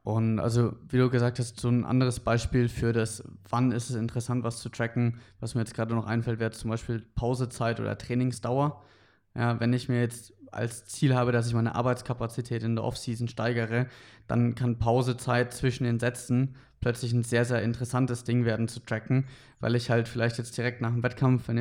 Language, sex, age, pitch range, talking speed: German, male, 20-39, 115-125 Hz, 200 wpm